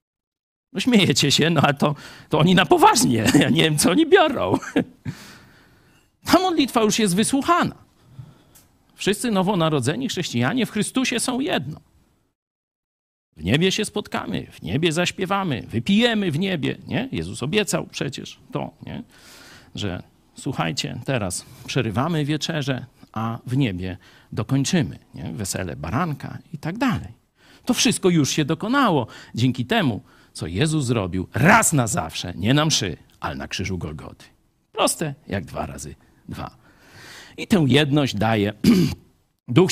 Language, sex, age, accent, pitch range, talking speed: Polish, male, 50-69, native, 125-195 Hz, 130 wpm